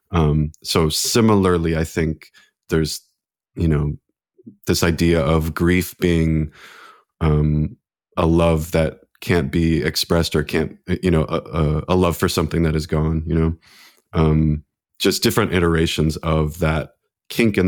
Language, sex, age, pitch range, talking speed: English, male, 30-49, 80-90 Hz, 145 wpm